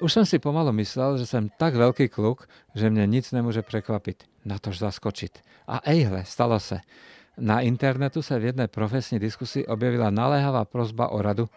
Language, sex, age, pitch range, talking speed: Czech, male, 50-69, 105-130 Hz, 170 wpm